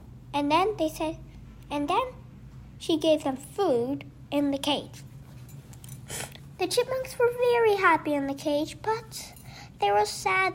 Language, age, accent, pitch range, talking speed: Hindi, 10-29, American, 290-355 Hz, 140 wpm